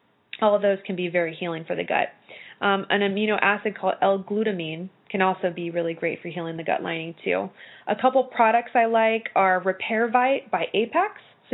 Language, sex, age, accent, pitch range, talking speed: English, female, 20-39, American, 180-230 Hz, 190 wpm